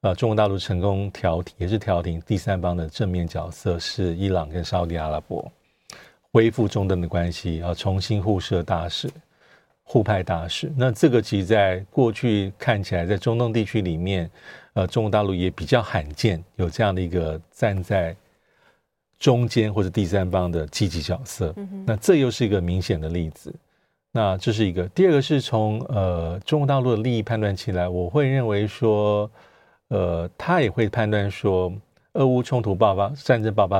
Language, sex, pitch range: Chinese, male, 90-115 Hz